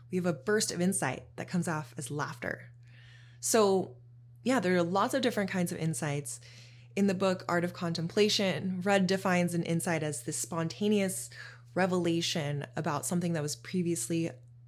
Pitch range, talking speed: 140-185 Hz, 165 wpm